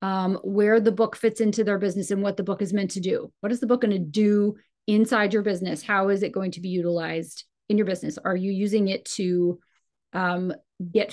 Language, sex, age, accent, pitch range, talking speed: English, female, 30-49, American, 190-225 Hz, 230 wpm